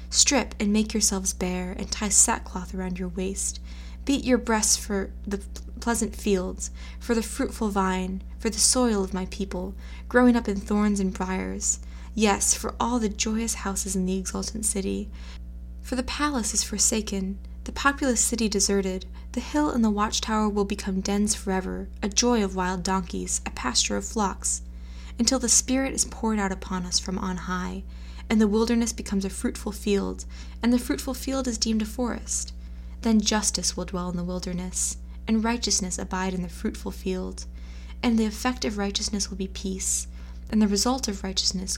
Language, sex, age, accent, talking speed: English, female, 20-39, American, 180 wpm